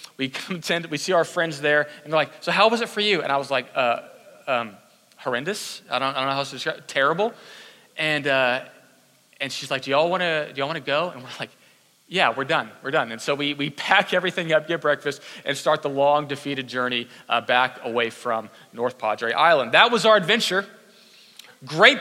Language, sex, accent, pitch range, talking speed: English, male, American, 155-225 Hz, 220 wpm